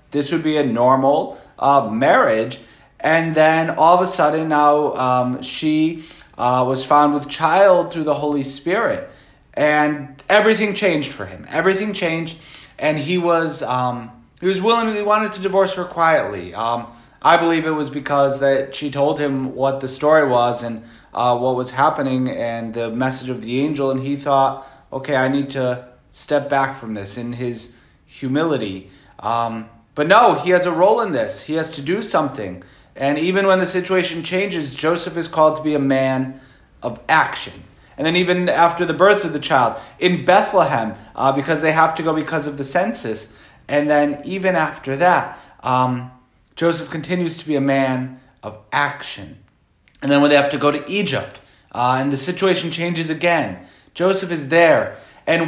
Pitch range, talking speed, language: 130-165 Hz, 175 wpm, English